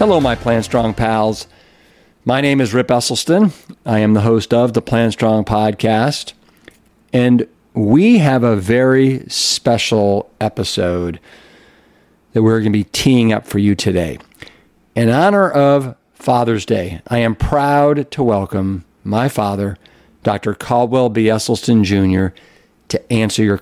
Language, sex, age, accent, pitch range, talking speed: English, male, 50-69, American, 105-130 Hz, 140 wpm